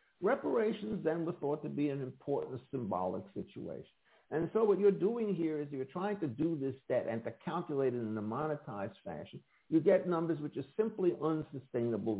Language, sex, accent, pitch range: English, male, American, 130-175 Hz